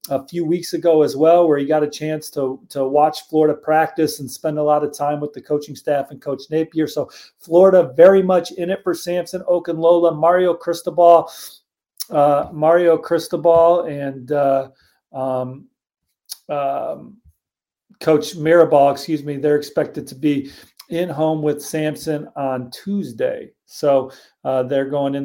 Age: 40-59